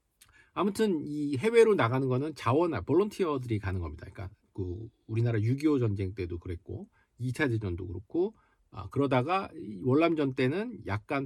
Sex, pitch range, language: male, 100-140 Hz, Korean